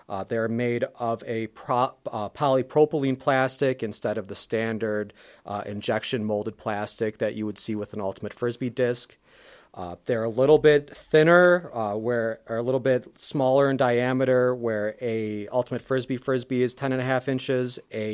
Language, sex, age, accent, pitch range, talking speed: English, male, 30-49, American, 115-135 Hz, 170 wpm